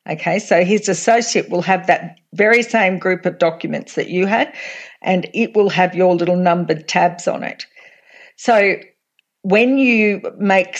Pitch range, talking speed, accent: 175-205 Hz, 160 wpm, Australian